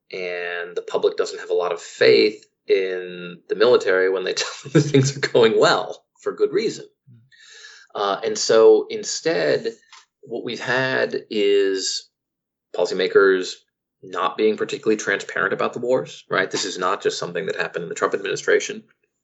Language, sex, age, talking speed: English, male, 30-49, 160 wpm